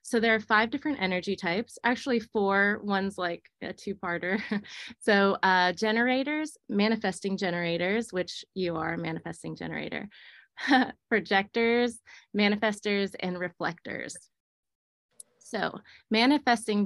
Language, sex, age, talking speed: English, female, 20-39, 105 wpm